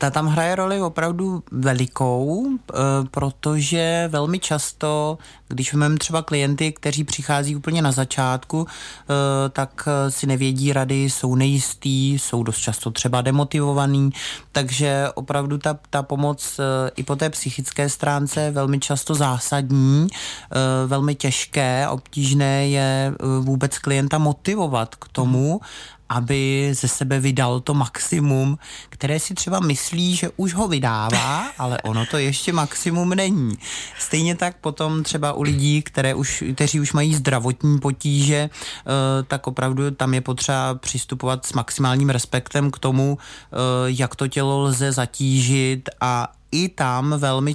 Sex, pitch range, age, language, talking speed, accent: male, 130-150 Hz, 30-49, Czech, 130 wpm, native